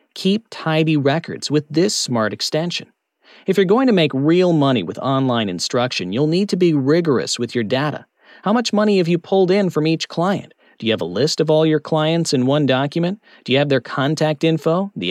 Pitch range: 140-190 Hz